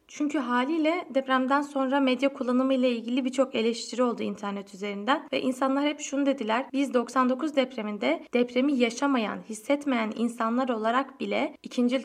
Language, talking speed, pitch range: Turkish, 140 wpm, 230-275 Hz